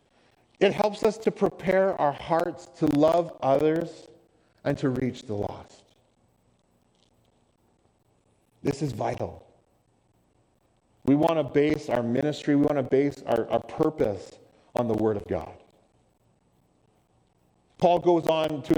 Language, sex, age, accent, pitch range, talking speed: English, male, 40-59, American, 130-170 Hz, 130 wpm